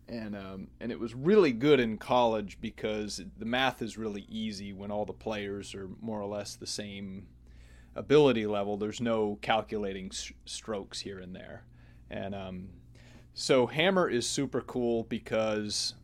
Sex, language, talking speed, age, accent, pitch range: male, English, 160 wpm, 30-49, American, 100-125 Hz